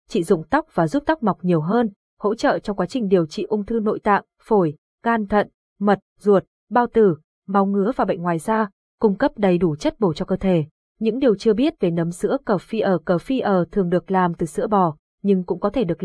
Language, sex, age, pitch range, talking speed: Vietnamese, female, 20-39, 185-235 Hz, 245 wpm